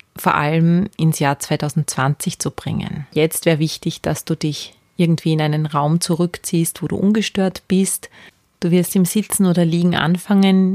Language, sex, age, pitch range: German, female, 30-49, 150-180 Hz